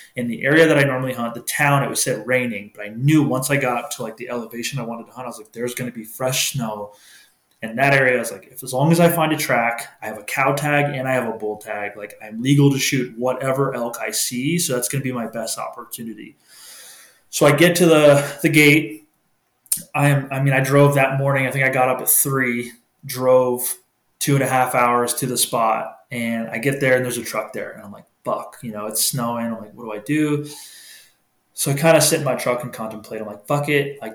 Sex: male